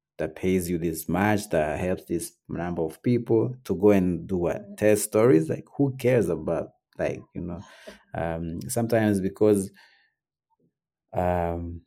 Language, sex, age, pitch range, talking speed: English, male, 30-49, 85-105 Hz, 145 wpm